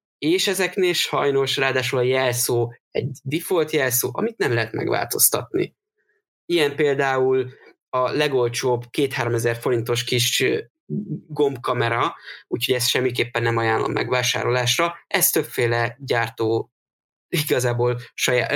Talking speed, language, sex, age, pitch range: 105 wpm, Hungarian, male, 20-39, 120-140 Hz